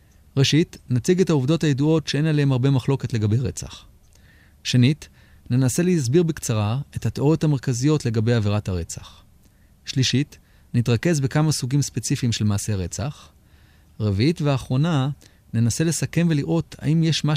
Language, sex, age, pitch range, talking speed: Hebrew, male, 30-49, 105-145 Hz, 130 wpm